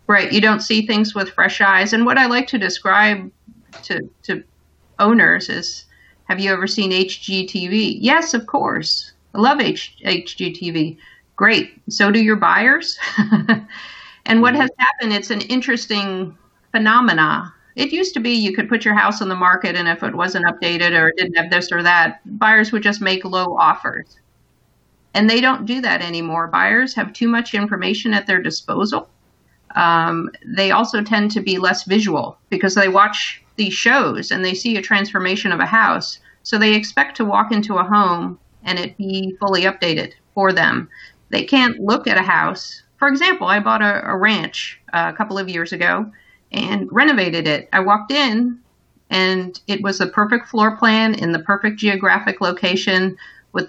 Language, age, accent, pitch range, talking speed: English, 50-69, American, 185-225 Hz, 180 wpm